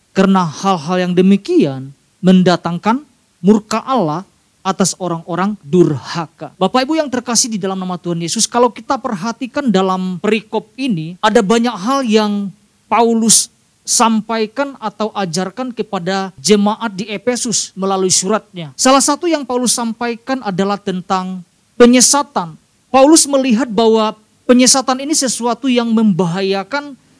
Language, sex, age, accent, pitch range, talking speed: Indonesian, male, 40-59, native, 210-305 Hz, 120 wpm